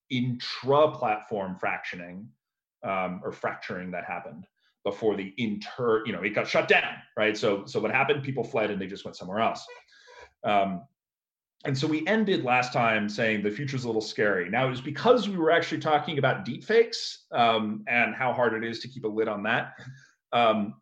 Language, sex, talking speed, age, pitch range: English, male, 185 wpm, 30-49, 110-135 Hz